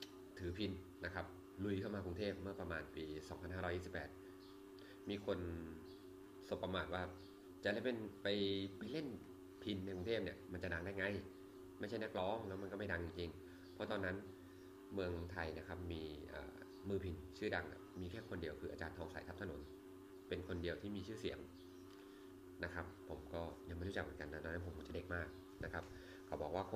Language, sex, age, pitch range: Thai, male, 20-39, 90-95 Hz